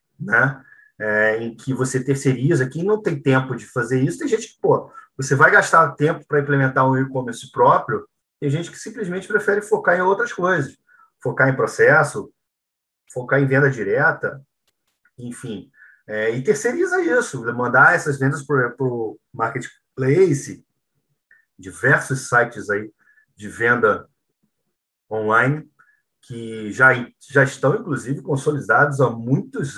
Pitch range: 125-165 Hz